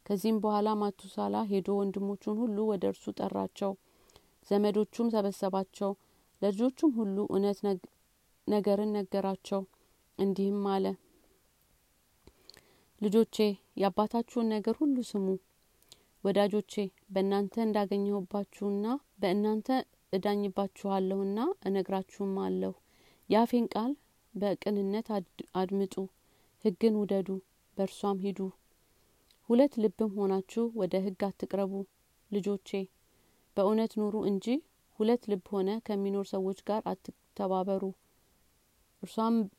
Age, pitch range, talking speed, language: 40-59, 195-215 Hz, 85 wpm, Amharic